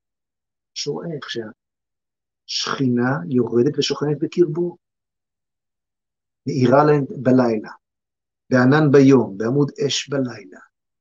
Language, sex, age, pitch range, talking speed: Hebrew, male, 50-69, 130-175 Hz, 70 wpm